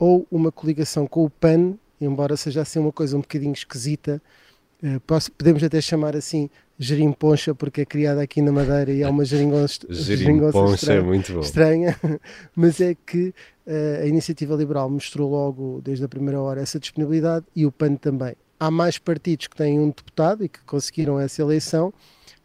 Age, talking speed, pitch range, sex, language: 20-39, 160 wpm, 140-160 Hz, male, Portuguese